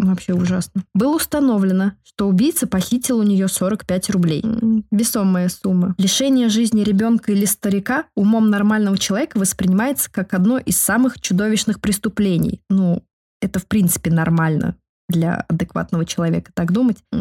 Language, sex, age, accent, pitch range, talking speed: Russian, female, 20-39, native, 175-225 Hz, 135 wpm